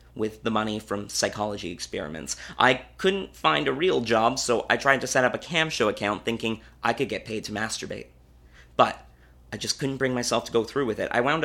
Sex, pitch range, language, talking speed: male, 100-120 Hz, English, 220 wpm